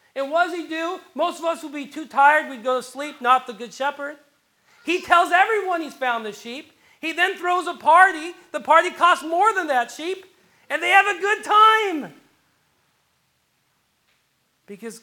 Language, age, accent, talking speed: English, 40-59, American, 185 wpm